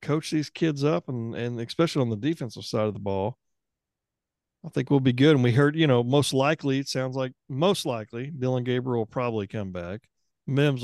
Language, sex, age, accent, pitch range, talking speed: English, male, 40-59, American, 115-135 Hz, 210 wpm